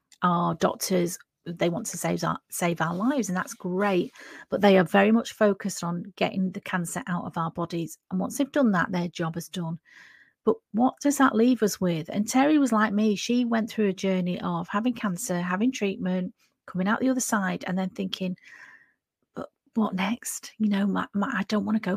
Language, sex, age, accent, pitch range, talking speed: English, female, 40-59, British, 185-230 Hz, 210 wpm